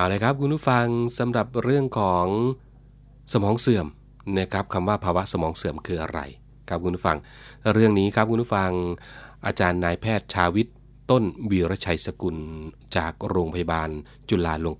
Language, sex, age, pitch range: Thai, male, 30-49, 85-115 Hz